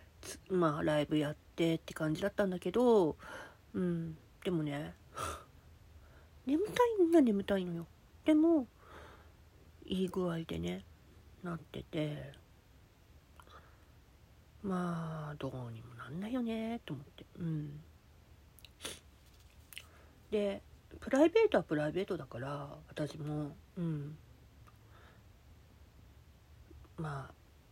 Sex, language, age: female, Japanese, 50-69